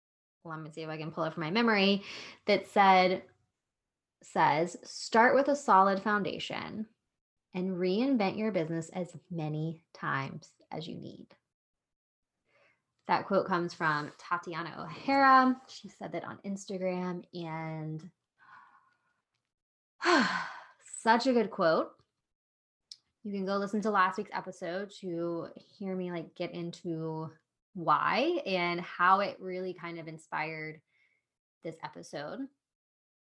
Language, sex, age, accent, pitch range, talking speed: English, female, 20-39, American, 170-220 Hz, 125 wpm